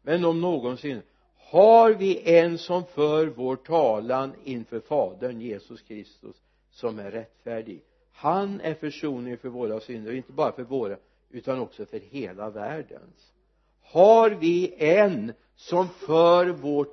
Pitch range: 125-170 Hz